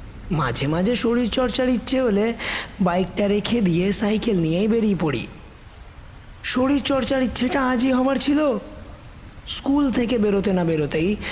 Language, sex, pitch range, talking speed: Bengali, male, 165-230 Hz, 115 wpm